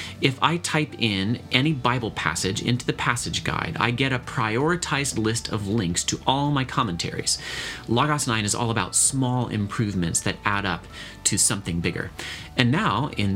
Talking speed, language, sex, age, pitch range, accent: 170 wpm, English, male, 40-59, 95-130 Hz, American